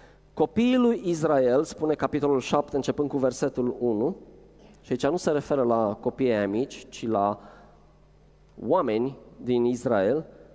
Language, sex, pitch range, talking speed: Romanian, male, 115-170 Hz, 130 wpm